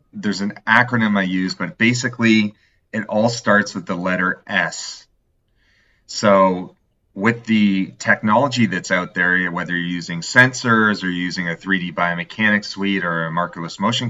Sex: male